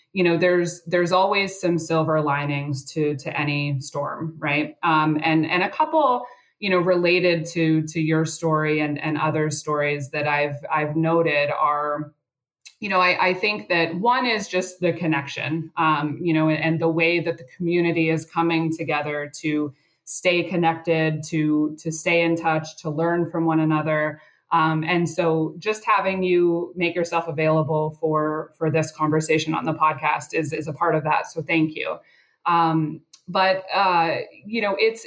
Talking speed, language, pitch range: 175 wpm, English, 155-180 Hz